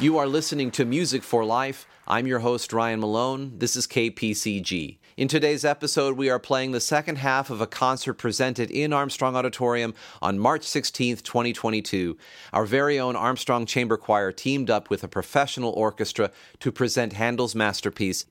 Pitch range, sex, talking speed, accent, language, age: 100-130 Hz, male, 165 wpm, American, English, 40-59